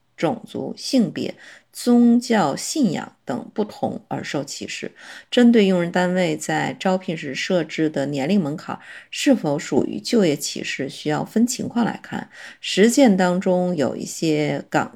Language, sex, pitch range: Chinese, female, 155-220 Hz